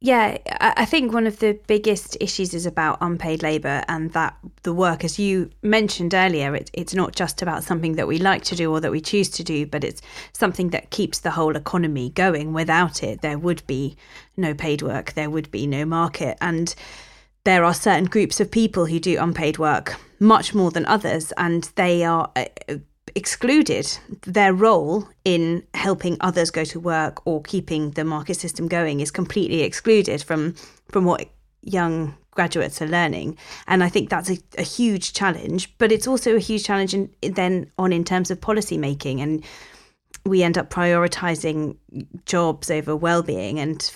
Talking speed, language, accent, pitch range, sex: 185 wpm, English, British, 155-190 Hz, female